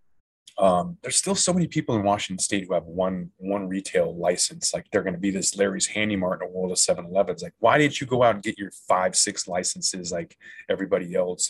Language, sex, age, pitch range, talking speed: English, male, 20-39, 95-125 Hz, 230 wpm